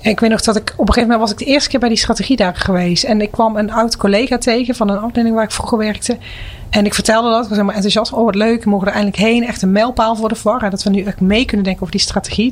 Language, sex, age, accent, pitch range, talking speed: Dutch, female, 30-49, Dutch, 195-230 Hz, 310 wpm